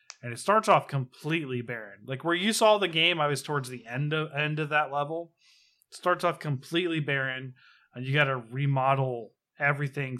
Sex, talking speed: male, 195 wpm